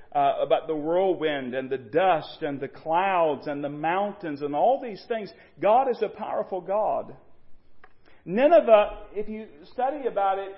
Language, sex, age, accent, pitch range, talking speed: English, male, 40-59, American, 200-285 Hz, 160 wpm